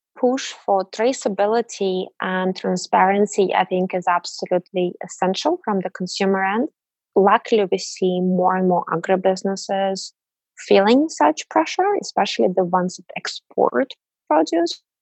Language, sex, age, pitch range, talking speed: English, female, 20-39, 180-205 Hz, 120 wpm